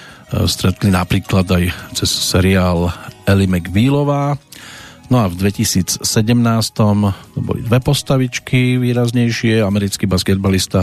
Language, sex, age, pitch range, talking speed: Slovak, male, 40-59, 90-115 Hz, 100 wpm